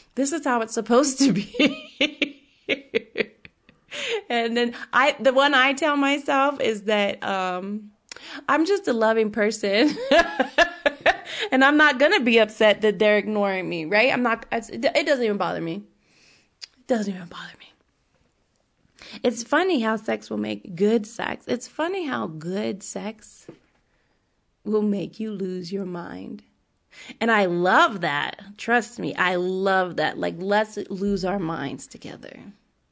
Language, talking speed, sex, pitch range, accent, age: English, 150 wpm, female, 205-290 Hz, American, 20-39